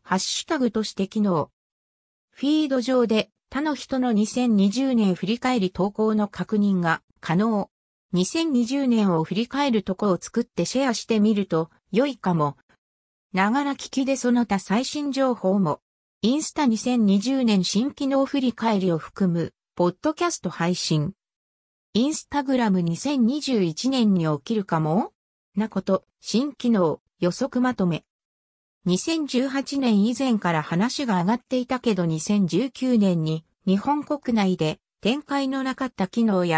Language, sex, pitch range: Japanese, female, 185-255 Hz